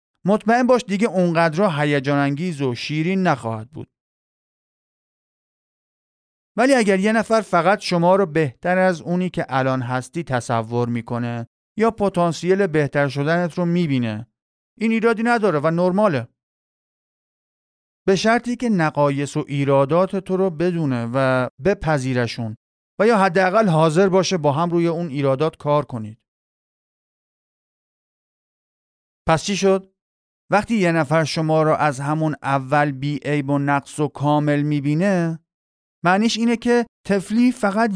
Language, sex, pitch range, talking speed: Persian, male, 135-190 Hz, 125 wpm